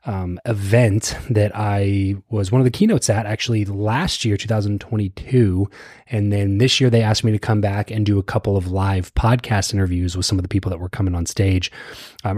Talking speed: 210 wpm